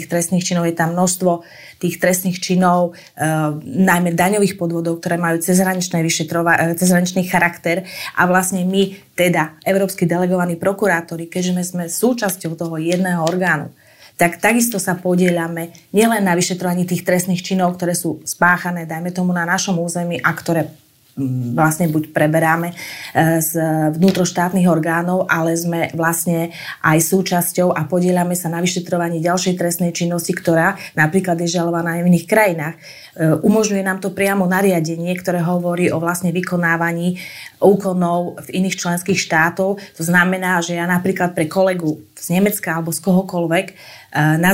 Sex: female